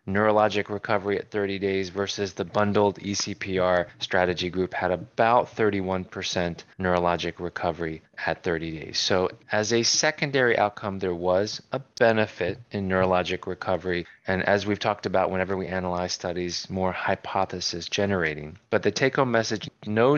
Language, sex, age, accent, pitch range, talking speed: English, male, 30-49, American, 90-110 Hz, 145 wpm